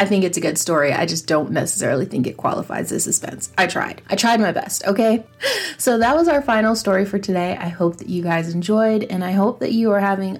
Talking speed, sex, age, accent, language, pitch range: 250 wpm, female, 30-49, American, English, 170-200 Hz